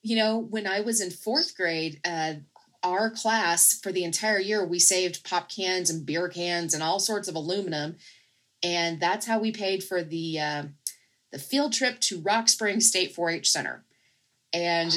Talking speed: 180 wpm